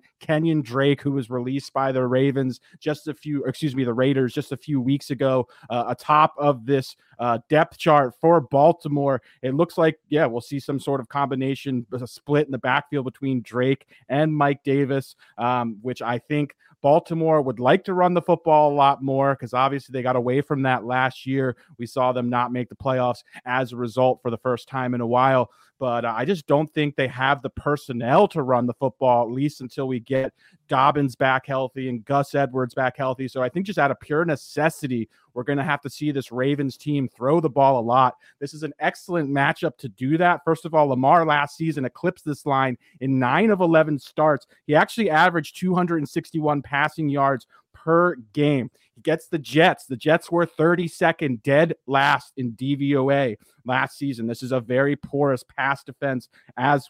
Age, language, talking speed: 30-49, English, 200 wpm